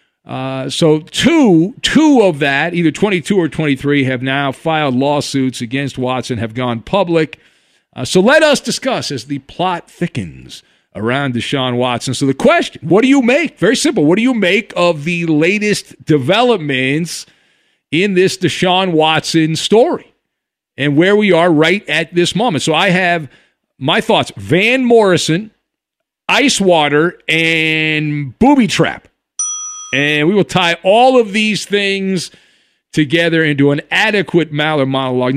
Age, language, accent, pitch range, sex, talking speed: 50-69, English, American, 145-205 Hz, male, 145 wpm